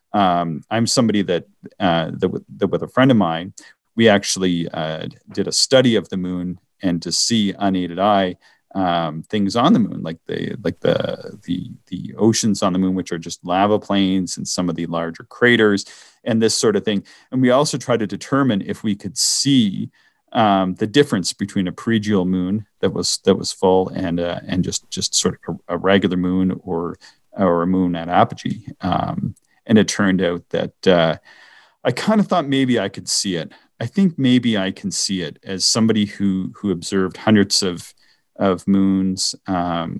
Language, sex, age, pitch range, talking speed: English, male, 40-59, 90-110 Hz, 195 wpm